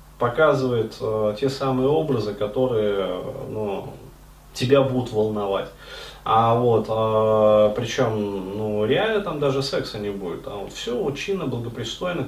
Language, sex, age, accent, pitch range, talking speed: Russian, male, 30-49, native, 110-140 Hz, 130 wpm